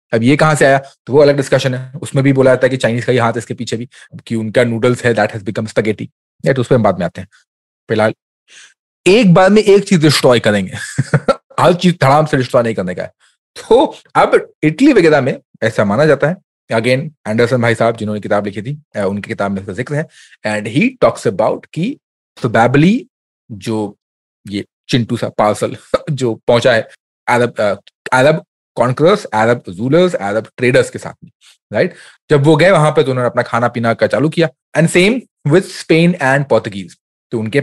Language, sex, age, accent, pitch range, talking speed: Hindi, male, 30-49, native, 115-160 Hz, 135 wpm